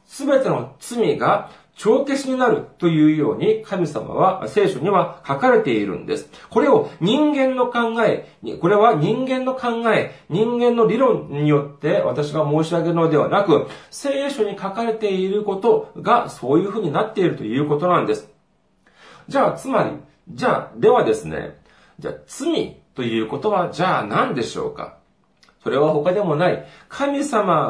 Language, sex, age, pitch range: Japanese, male, 40-59, 145-225 Hz